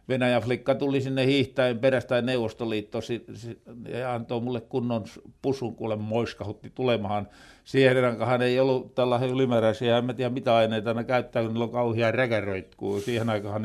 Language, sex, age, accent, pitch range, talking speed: Finnish, male, 60-79, native, 115-150 Hz, 150 wpm